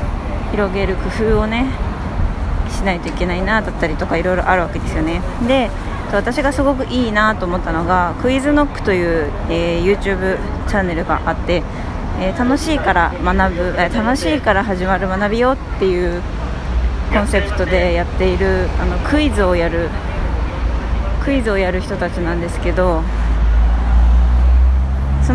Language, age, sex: Japanese, 20-39, female